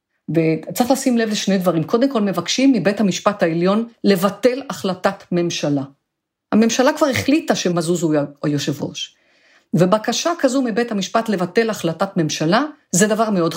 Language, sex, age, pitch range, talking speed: Hebrew, female, 50-69, 175-230 Hz, 135 wpm